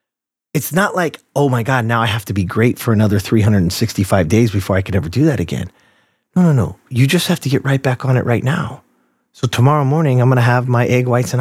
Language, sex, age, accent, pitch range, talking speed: English, male, 30-49, American, 105-145 Hz, 250 wpm